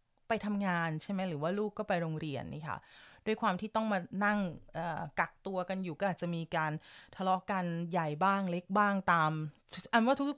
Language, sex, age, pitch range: Thai, female, 30-49, 170-220 Hz